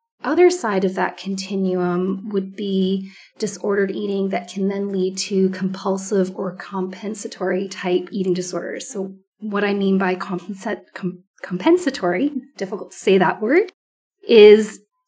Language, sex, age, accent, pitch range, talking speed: English, female, 30-49, American, 185-205 Hz, 125 wpm